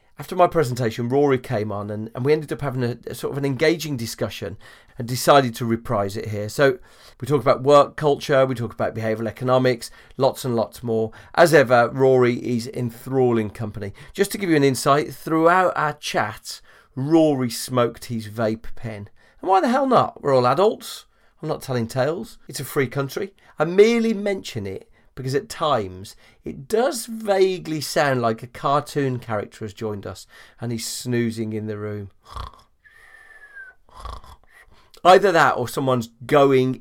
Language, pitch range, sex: English, 115-150 Hz, male